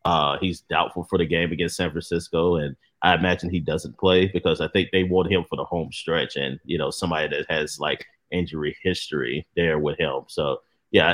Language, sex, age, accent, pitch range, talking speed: English, male, 30-49, American, 80-95 Hz, 210 wpm